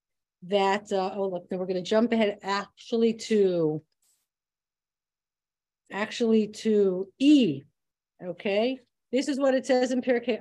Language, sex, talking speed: English, female, 135 wpm